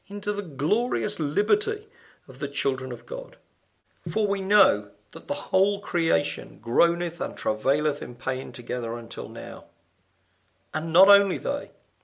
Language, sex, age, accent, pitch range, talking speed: English, male, 50-69, British, 125-200 Hz, 140 wpm